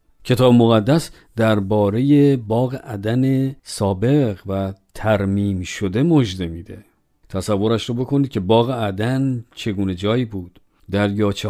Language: Persian